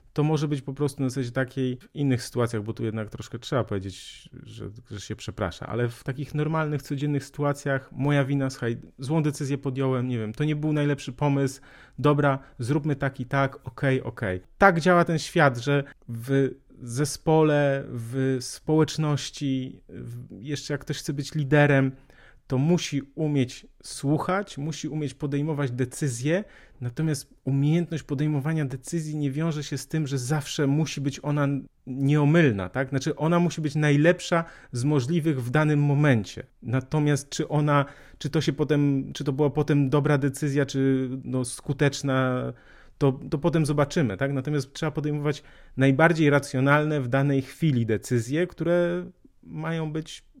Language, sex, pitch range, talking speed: Polish, male, 130-150 Hz, 155 wpm